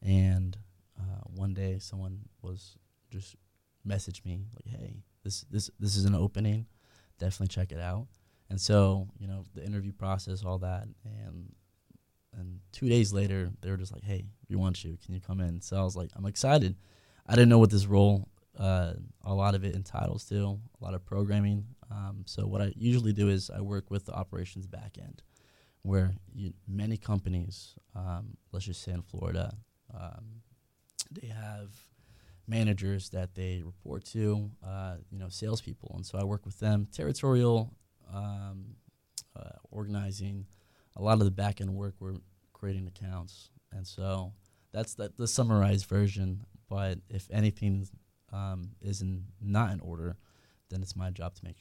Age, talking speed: 20-39, 170 wpm